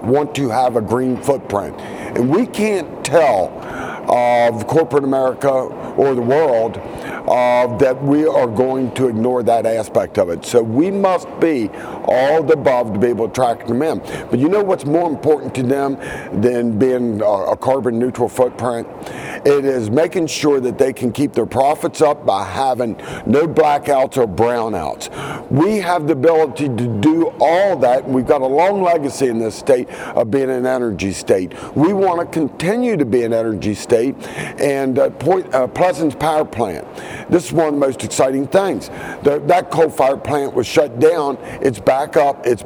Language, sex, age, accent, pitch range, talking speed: English, male, 50-69, American, 125-160 Hz, 180 wpm